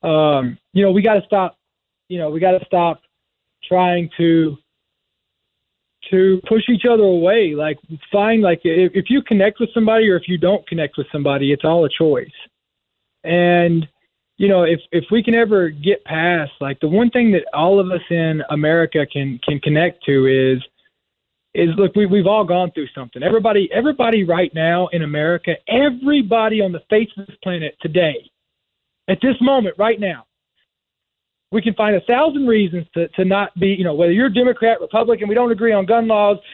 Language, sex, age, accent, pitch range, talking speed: English, male, 20-39, American, 160-210 Hz, 185 wpm